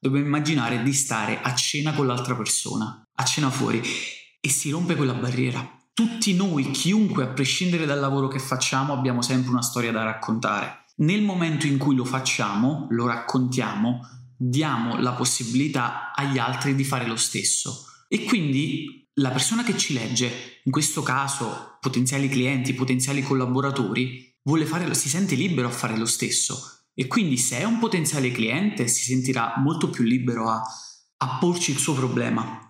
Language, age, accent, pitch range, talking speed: Italian, 20-39, native, 125-145 Hz, 160 wpm